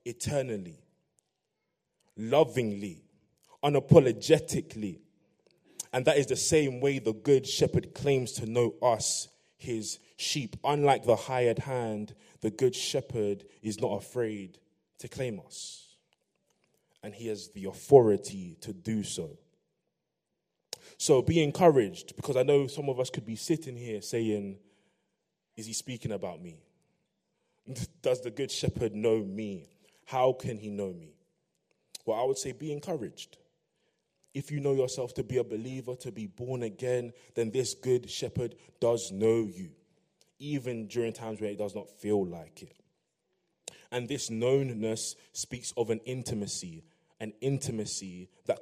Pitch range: 105-135 Hz